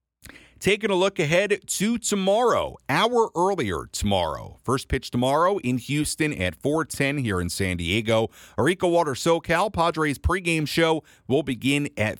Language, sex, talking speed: English, male, 150 wpm